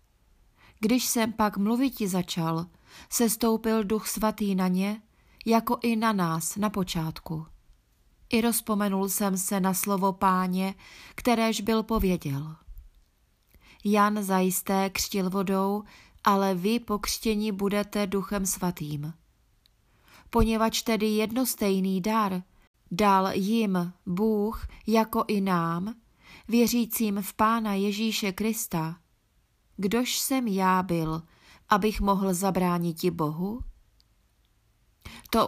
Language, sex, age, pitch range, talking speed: Czech, female, 30-49, 185-220 Hz, 105 wpm